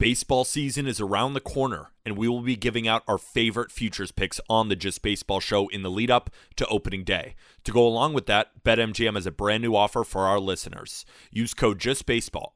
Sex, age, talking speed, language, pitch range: male, 30-49, 215 wpm, English, 100-125 Hz